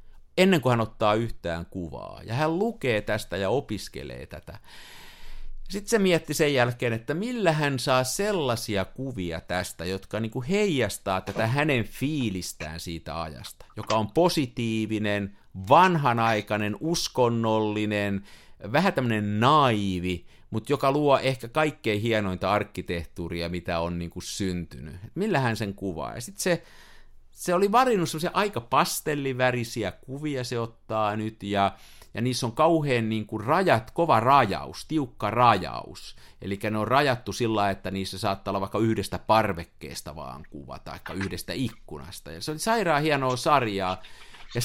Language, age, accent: Finnish, 50-69, native